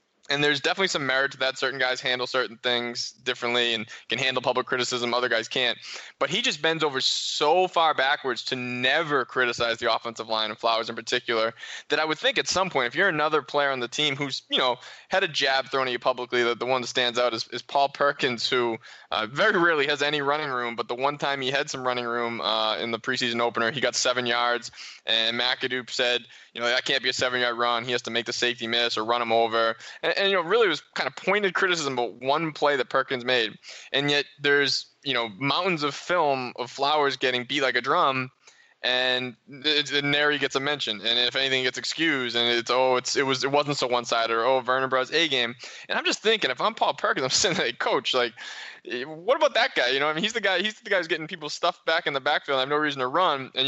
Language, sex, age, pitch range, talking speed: English, male, 20-39, 120-145 Hz, 250 wpm